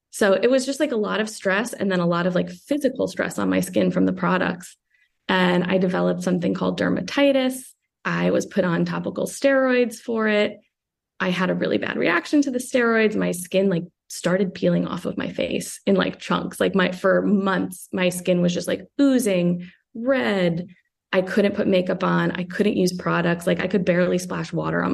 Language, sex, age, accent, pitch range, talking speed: English, female, 20-39, American, 170-200 Hz, 205 wpm